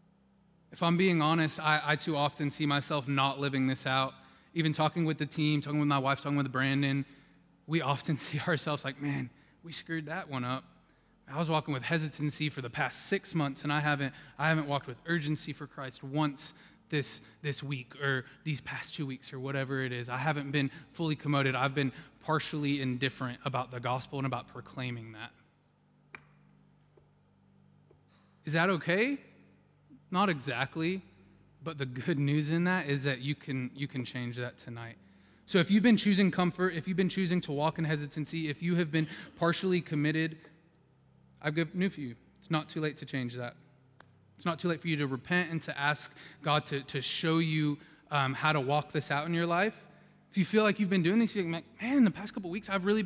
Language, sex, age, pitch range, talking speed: English, male, 20-39, 140-170 Hz, 205 wpm